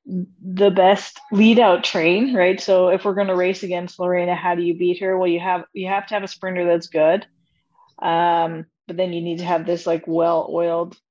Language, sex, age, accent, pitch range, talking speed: English, female, 20-39, American, 175-215 Hz, 215 wpm